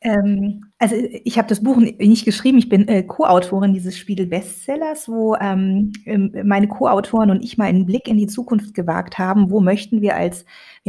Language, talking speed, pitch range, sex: German, 165 wpm, 190-235 Hz, female